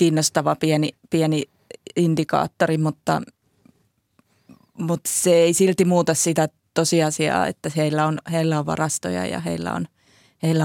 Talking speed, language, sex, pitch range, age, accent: 125 wpm, Finnish, female, 150-170 Hz, 20-39, native